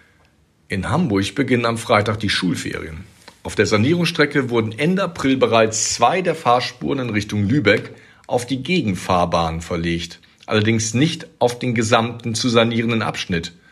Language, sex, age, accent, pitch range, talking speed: German, male, 50-69, German, 95-140 Hz, 140 wpm